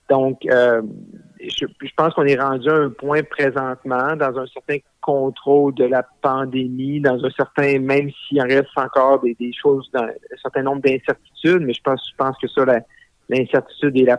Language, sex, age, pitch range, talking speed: French, male, 50-69, 130-145 Hz, 200 wpm